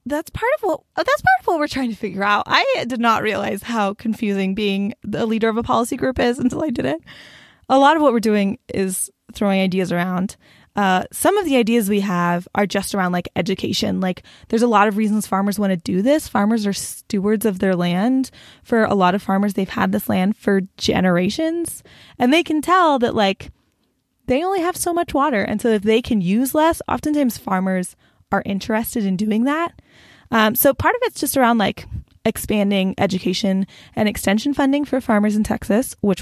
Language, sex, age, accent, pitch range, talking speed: English, female, 10-29, American, 195-250 Hz, 205 wpm